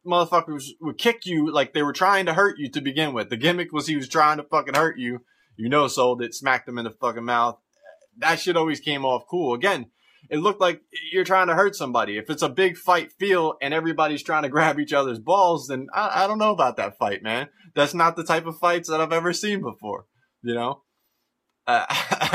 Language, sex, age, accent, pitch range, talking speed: English, male, 20-39, American, 125-175 Hz, 230 wpm